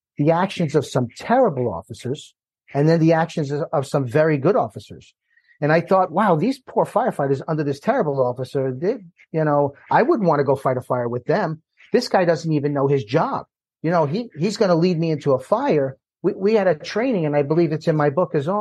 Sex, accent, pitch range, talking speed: male, American, 140-190 Hz, 230 wpm